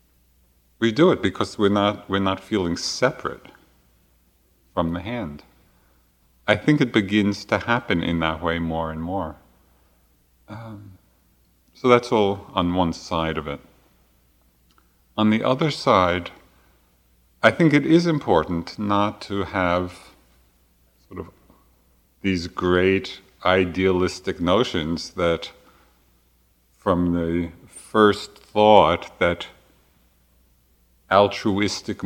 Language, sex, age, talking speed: English, male, 50-69, 110 wpm